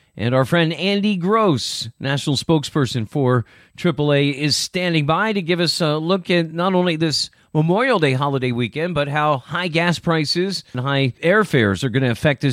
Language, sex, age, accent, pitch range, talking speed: English, male, 40-59, American, 120-160 Hz, 175 wpm